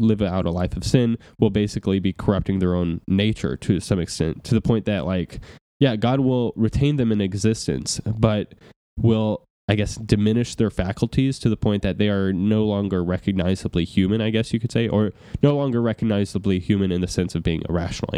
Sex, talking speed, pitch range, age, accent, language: male, 205 wpm, 95-115 Hz, 10-29, American, English